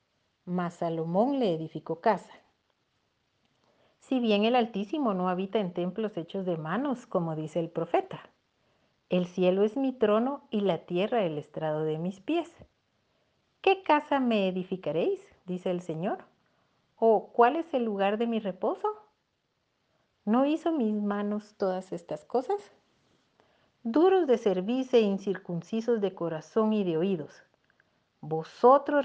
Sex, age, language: female, 40-59, Spanish